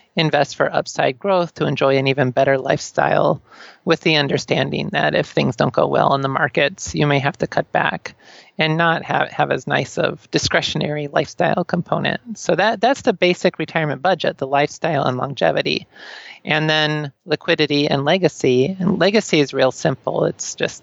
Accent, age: American, 30-49